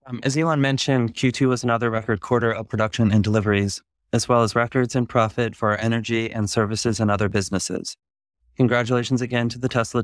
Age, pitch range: 30-49, 105-125 Hz